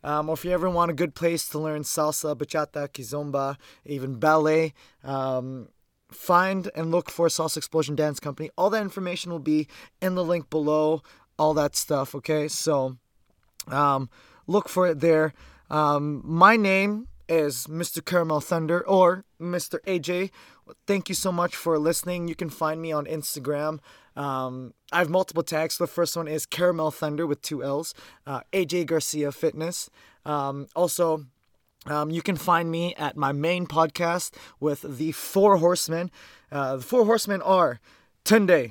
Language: English